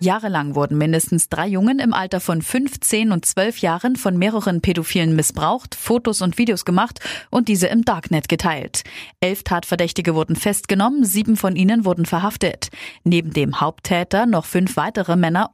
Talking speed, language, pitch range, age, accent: 160 wpm, German, 165-215 Hz, 30-49, German